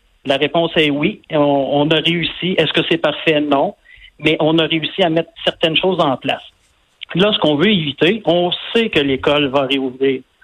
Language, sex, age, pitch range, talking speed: French, male, 50-69, 145-185 Hz, 195 wpm